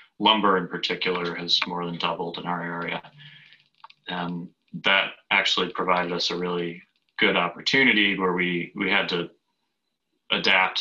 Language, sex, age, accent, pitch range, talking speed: English, male, 30-49, American, 85-90 Hz, 140 wpm